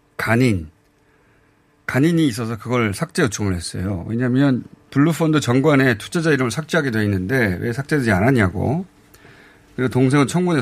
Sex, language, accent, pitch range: male, Korean, native, 105-155 Hz